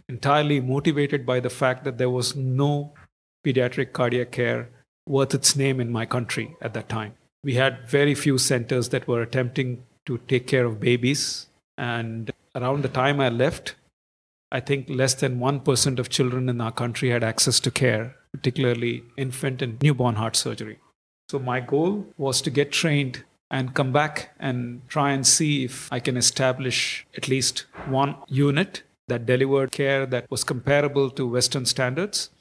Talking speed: 170 wpm